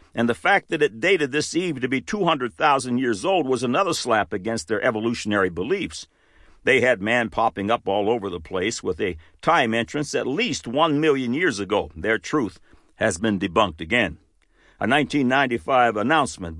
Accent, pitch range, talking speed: American, 120-165 Hz, 175 wpm